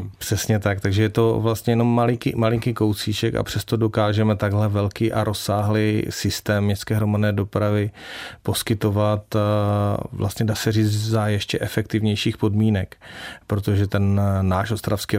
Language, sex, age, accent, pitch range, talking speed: Czech, male, 30-49, native, 100-110 Hz, 135 wpm